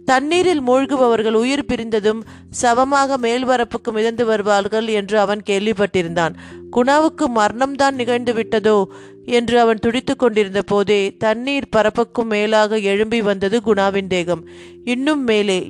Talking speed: 120 wpm